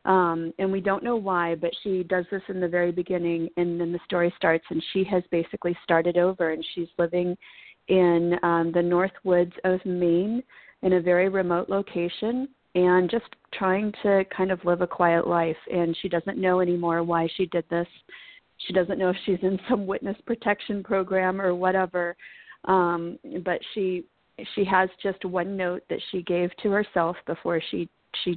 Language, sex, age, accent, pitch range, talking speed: English, female, 40-59, American, 170-190 Hz, 185 wpm